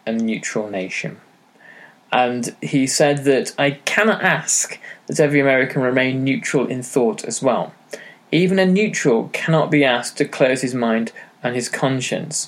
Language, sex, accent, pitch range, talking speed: English, male, British, 125-150 Hz, 155 wpm